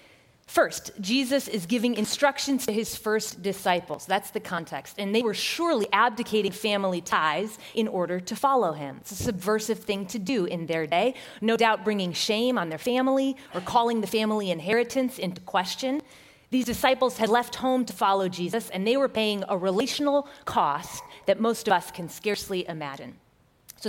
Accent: American